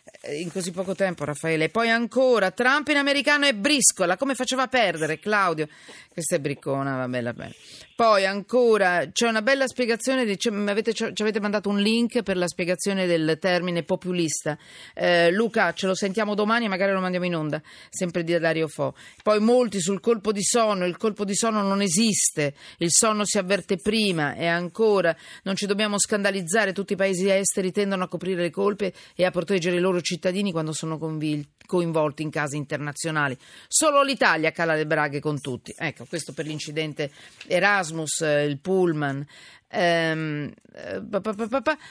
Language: Italian